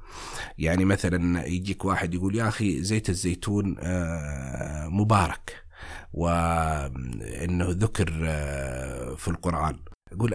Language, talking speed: Arabic, 85 wpm